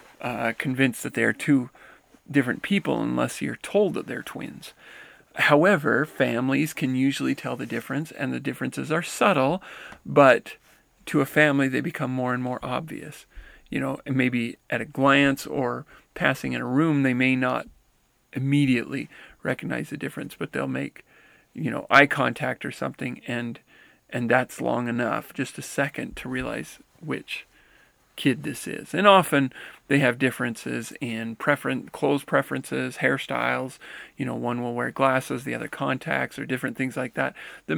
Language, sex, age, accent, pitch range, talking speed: English, male, 40-59, American, 120-140 Hz, 160 wpm